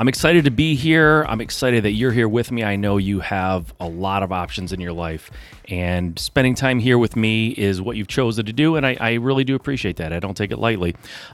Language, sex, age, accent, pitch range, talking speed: English, male, 30-49, American, 100-135 Hz, 250 wpm